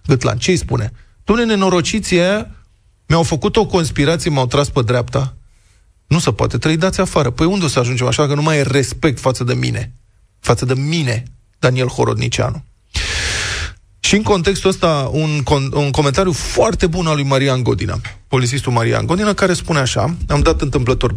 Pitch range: 115-160 Hz